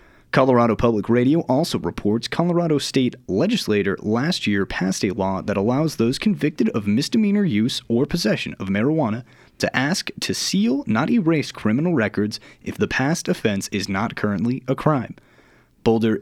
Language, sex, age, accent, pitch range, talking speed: English, male, 30-49, American, 105-145 Hz, 155 wpm